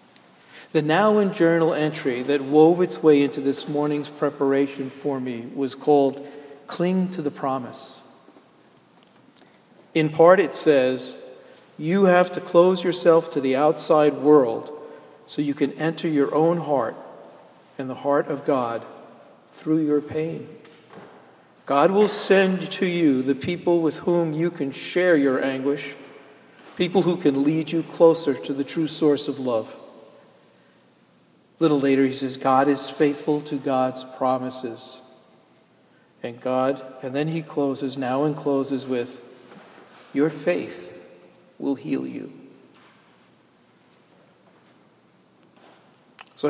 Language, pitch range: English, 135-160 Hz